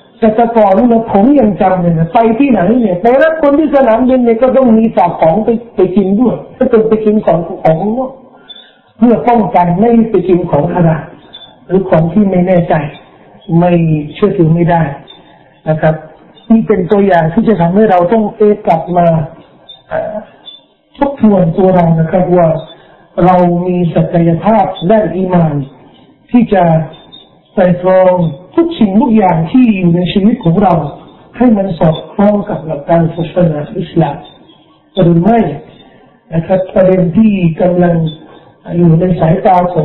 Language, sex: Thai, male